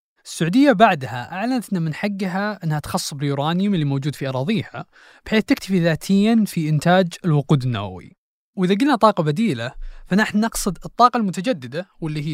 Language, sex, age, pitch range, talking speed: Arabic, male, 20-39, 155-215 Hz, 145 wpm